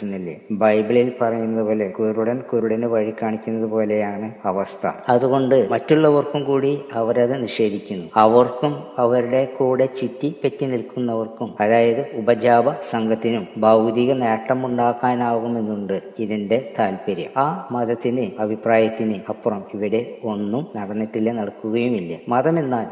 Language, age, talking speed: Malayalam, 20-39, 100 wpm